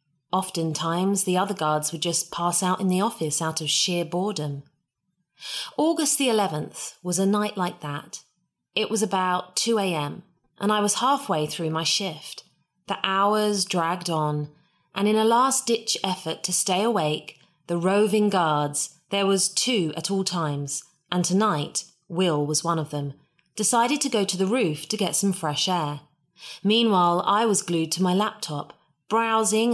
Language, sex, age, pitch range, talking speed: English, female, 30-49, 155-210 Hz, 165 wpm